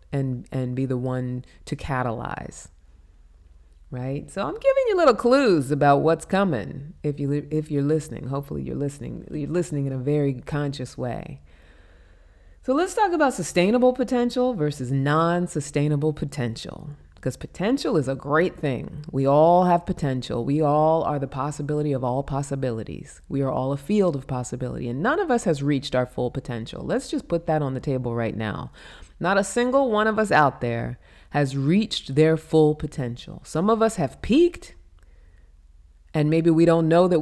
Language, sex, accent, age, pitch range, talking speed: English, female, American, 30-49, 125-180 Hz, 175 wpm